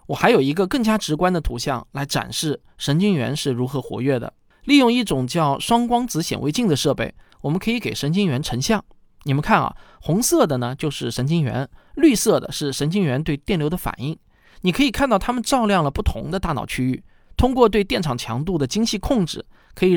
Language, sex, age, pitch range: Chinese, male, 20-39, 130-185 Hz